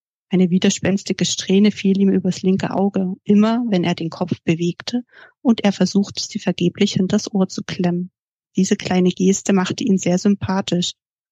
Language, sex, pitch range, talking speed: German, female, 180-205 Hz, 160 wpm